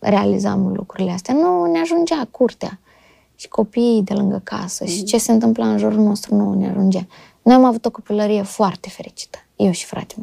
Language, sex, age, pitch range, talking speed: Romanian, female, 20-39, 195-240 Hz, 190 wpm